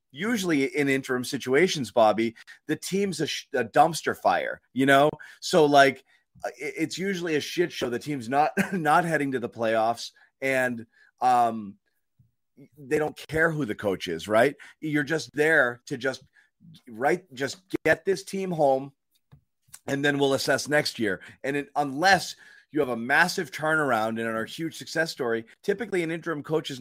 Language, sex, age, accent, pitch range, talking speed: English, male, 30-49, American, 130-170 Hz, 165 wpm